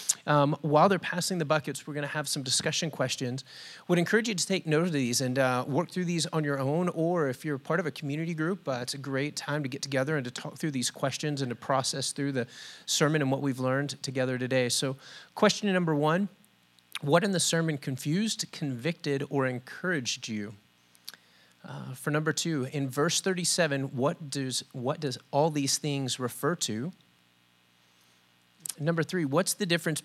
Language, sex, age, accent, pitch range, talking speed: English, male, 30-49, American, 125-160 Hz, 190 wpm